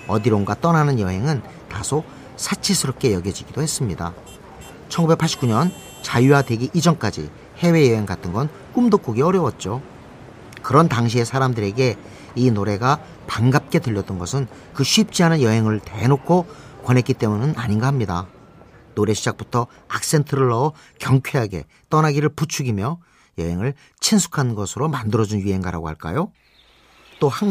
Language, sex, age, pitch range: Korean, male, 40-59, 105-155 Hz